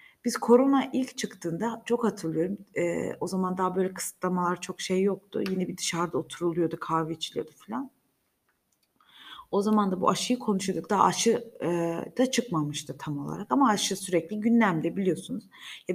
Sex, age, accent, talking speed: female, 30-49, native, 155 wpm